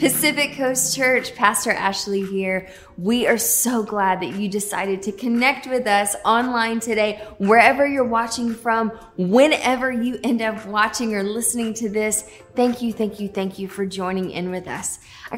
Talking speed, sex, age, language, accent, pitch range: 170 wpm, female, 20-39, English, American, 205-255 Hz